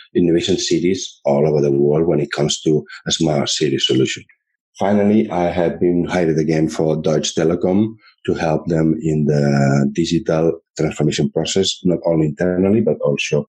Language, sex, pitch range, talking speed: English, male, 80-90 Hz, 160 wpm